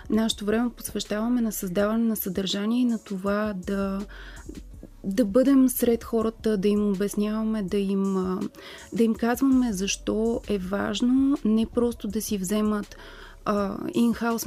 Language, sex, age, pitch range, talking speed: Bulgarian, female, 30-49, 200-235 Hz, 135 wpm